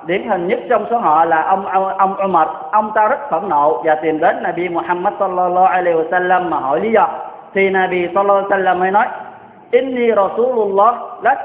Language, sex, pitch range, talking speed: Vietnamese, male, 170-215 Hz, 195 wpm